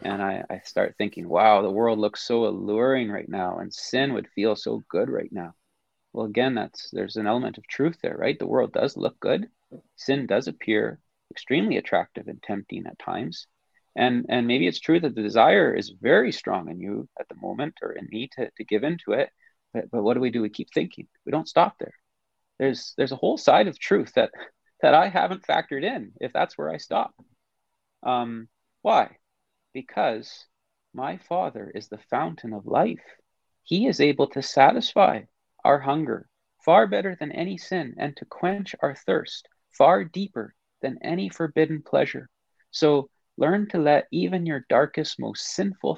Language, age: English, 30-49